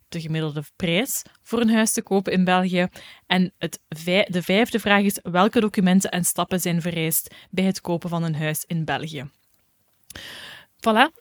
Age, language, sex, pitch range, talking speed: 10-29, Dutch, female, 175-220 Hz, 170 wpm